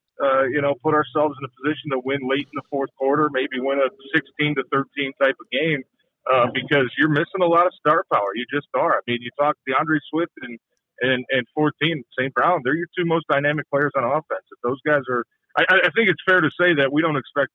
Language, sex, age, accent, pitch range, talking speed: English, male, 40-59, American, 125-150 Hz, 245 wpm